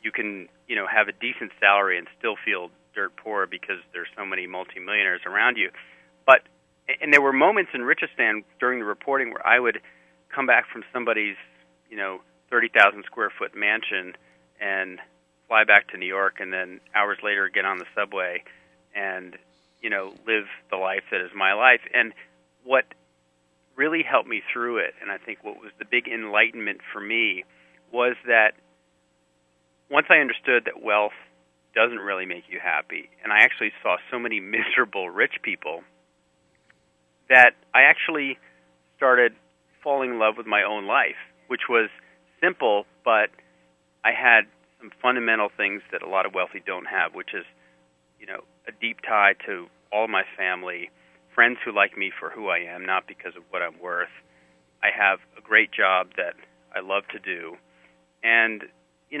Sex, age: male, 40-59